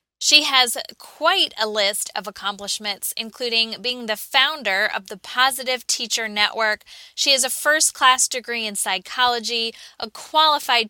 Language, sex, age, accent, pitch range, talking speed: English, female, 20-39, American, 210-255 Hz, 140 wpm